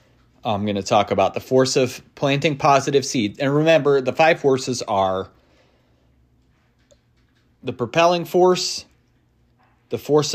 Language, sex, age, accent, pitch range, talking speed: English, male, 30-49, American, 120-145 Hz, 130 wpm